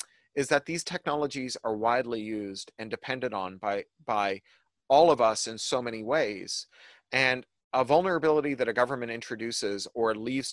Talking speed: 160 wpm